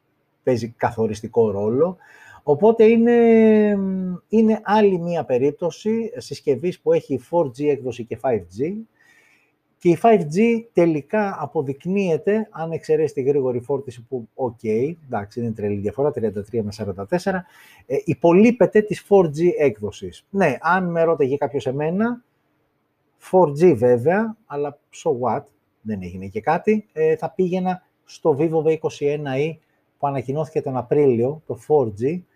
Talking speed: 125 wpm